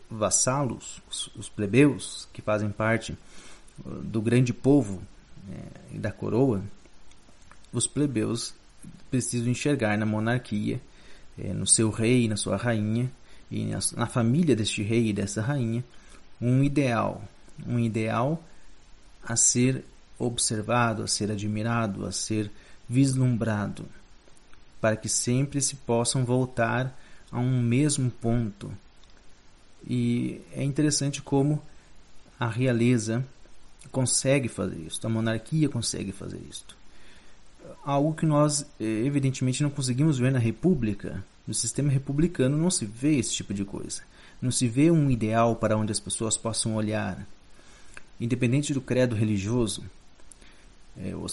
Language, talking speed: Portuguese, 125 wpm